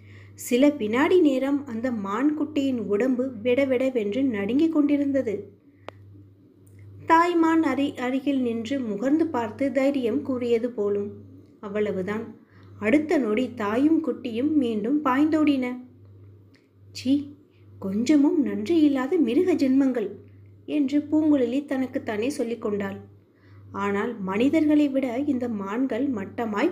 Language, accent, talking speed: Tamil, native, 95 wpm